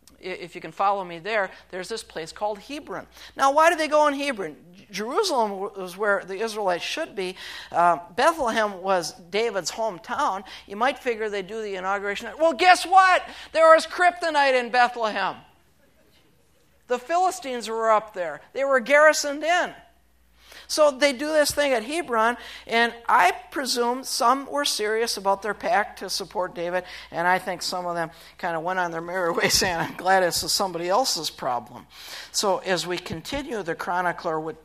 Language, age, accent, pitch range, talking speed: English, 50-69, American, 180-270 Hz, 175 wpm